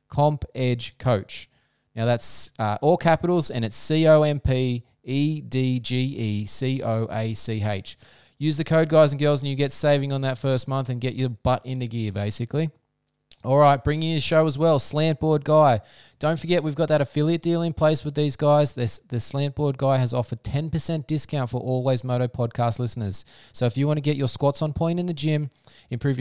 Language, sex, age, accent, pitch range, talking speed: English, male, 20-39, Australian, 120-150 Hz, 220 wpm